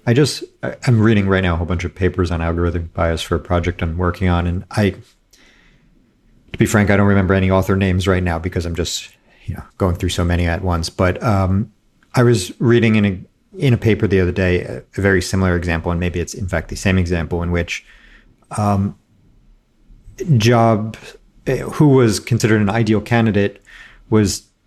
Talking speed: 195 wpm